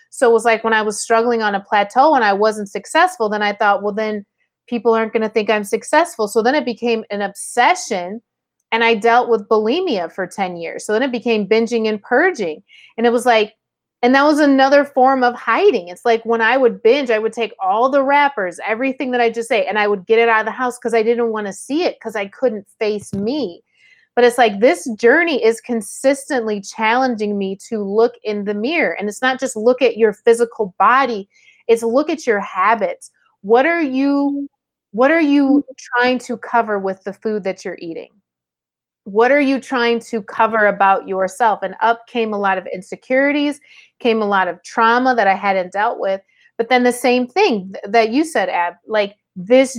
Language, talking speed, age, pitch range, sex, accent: English, 210 wpm, 30-49, 210-255 Hz, female, American